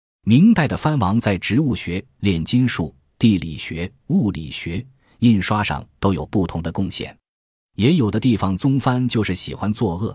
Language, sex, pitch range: Chinese, male, 85-110 Hz